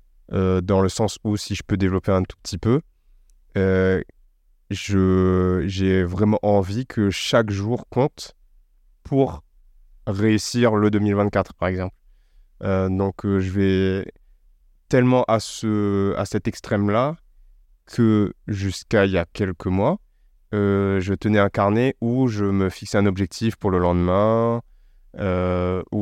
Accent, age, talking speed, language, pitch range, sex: French, 20-39, 140 wpm, French, 95-110 Hz, male